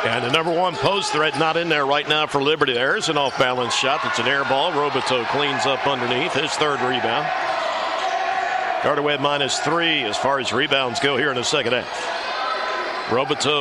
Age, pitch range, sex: 50-69, 150-215 Hz, male